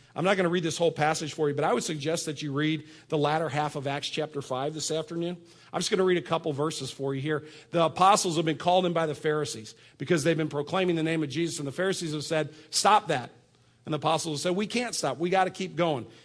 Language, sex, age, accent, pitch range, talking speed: English, male, 50-69, American, 140-180 Hz, 275 wpm